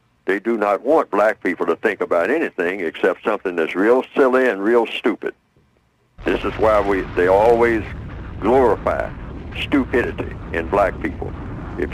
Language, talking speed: English, 145 wpm